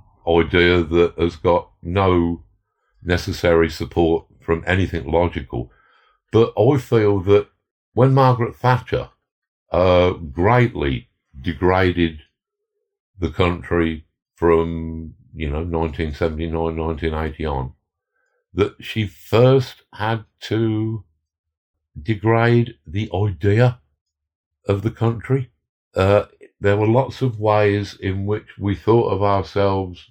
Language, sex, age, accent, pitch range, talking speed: English, male, 60-79, British, 85-110 Hz, 100 wpm